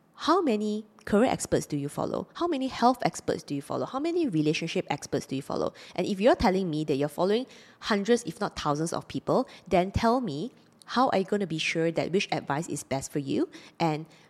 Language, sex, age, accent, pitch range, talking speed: English, female, 20-39, Malaysian, 150-205 Hz, 225 wpm